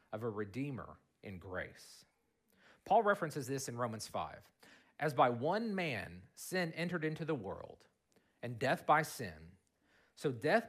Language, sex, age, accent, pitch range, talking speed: English, male, 40-59, American, 115-165 Hz, 145 wpm